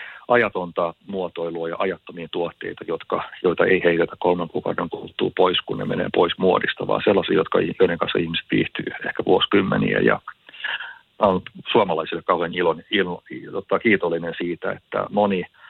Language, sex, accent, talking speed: Finnish, male, native, 140 wpm